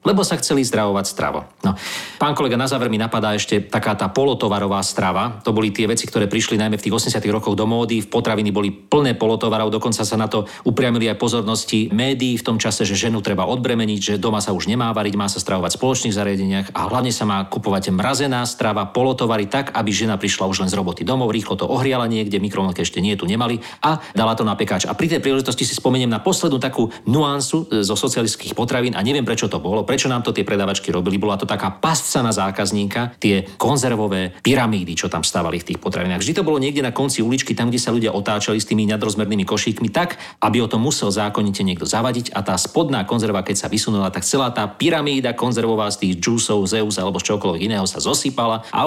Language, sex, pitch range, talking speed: Slovak, male, 100-125 Hz, 220 wpm